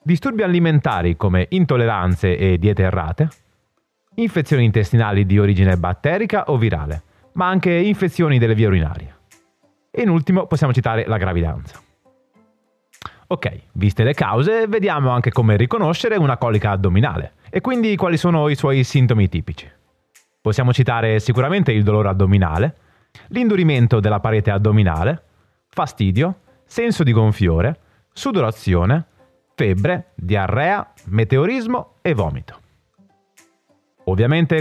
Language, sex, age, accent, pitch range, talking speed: Italian, male, 30-49, native, 100-160 Hz, 115 wpm